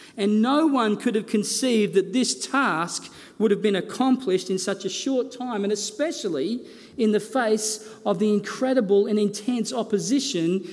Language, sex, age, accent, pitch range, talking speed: English, male, 40-59, Australian, 185-235 Hz, 160 wpm